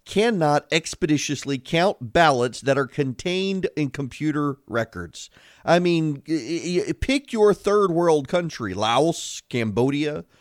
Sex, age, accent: male, 40-59, American